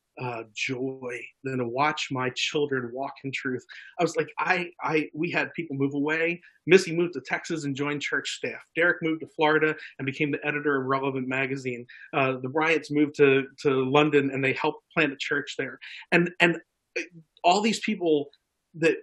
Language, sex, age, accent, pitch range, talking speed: English, male, 40-59, American, 140-175 Hz, 185 wpm